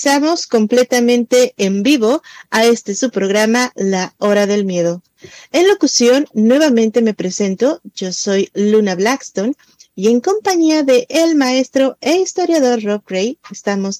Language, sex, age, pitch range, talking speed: Spanish, female, 30-49, 215-270 Hz, 135 wpm